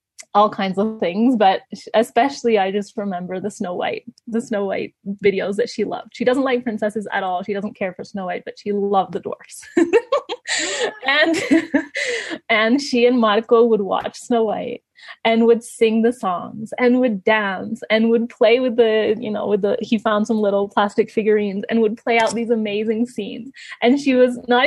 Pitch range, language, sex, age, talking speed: 210-260 Hz, English, female, 20-39, 190 wpm